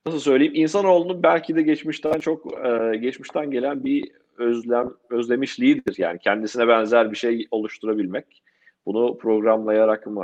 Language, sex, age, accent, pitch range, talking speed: Turkish, male, 40-59, native, 115-160 Hz, 125 wpm